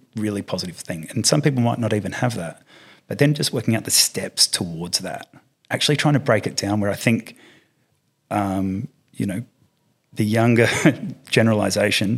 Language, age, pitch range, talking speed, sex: English, 30-49, 95-110 Hz, 170 wpm, male